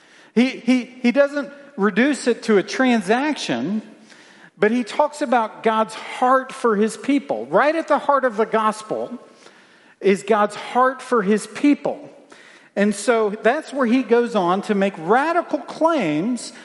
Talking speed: 150 wpm